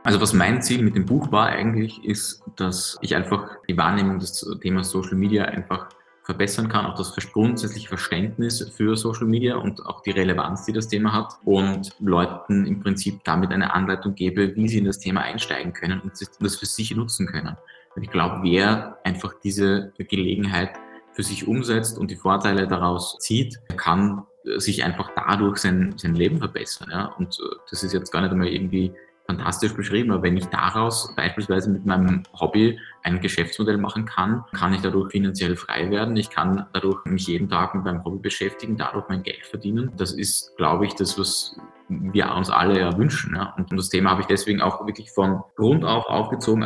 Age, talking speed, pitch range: 20-39, 185 wpm, 95-105 Hz